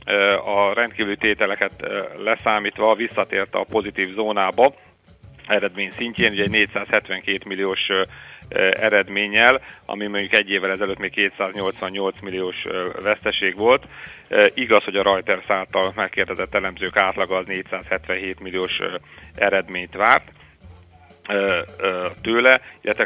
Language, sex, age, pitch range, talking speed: Hungarian, male, 40-59, 95-105 Hz, 100 wpm